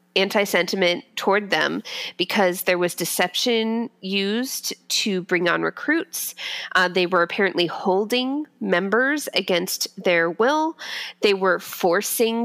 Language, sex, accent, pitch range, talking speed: English, female, American, 175-230 Hz, 115 wpm